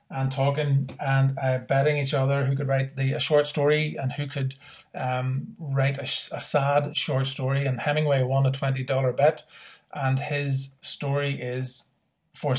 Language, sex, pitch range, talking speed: English, male, 135-150 Hz, 170 wpm